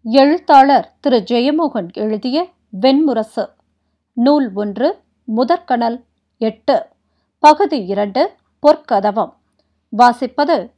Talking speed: 65 wpm